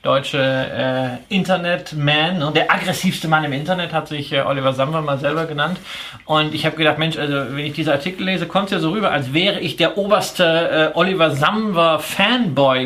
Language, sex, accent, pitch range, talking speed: German, male, German, 140-175 Hz, 195 wpm